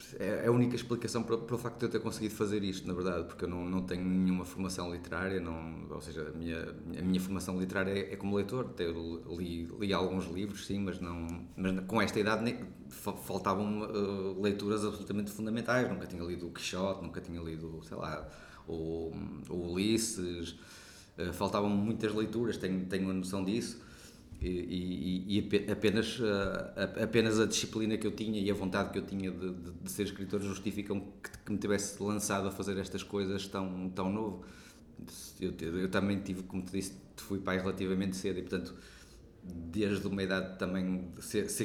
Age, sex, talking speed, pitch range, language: 20-39, male, 175 wpm, 90-105 Hz, Portuguese